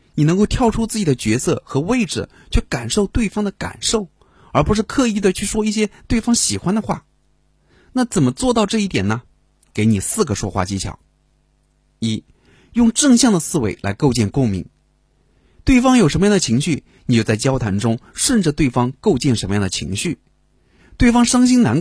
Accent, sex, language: native, male, Chinese